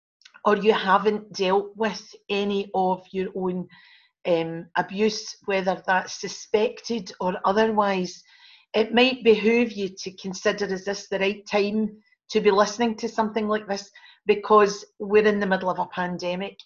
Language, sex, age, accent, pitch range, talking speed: English, female, 40-59, British, 195-230 Hz, 150 wpm